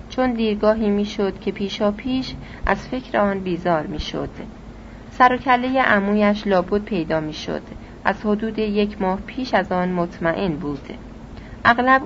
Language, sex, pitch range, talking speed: Persian, female, 175-215 Hz, 140 wpm